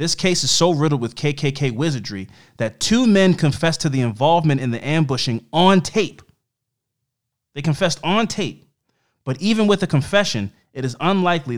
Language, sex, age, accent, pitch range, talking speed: English, male, 30-49, American, 120-155 Hz, 165 wpm